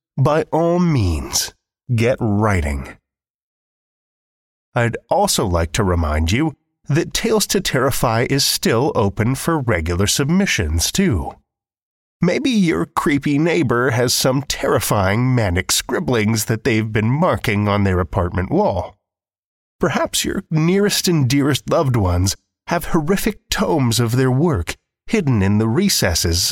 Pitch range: 100-150 Hz